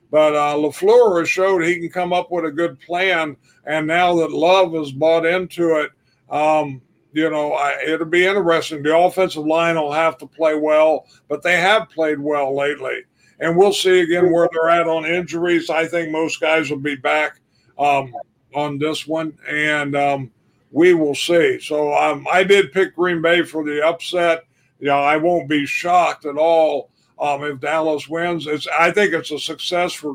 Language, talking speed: English, 185 wpm